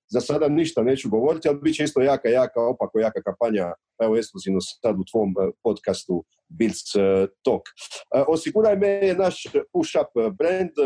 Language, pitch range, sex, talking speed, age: Croatian, 140-190 Hz, male, 155 wpm, 40-59